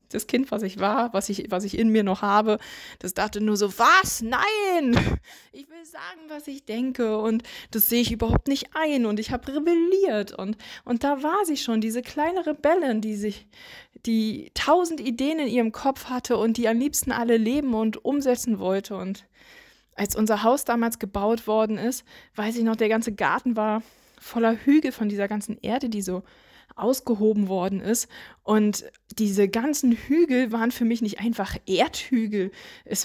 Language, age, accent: German, 20-39, German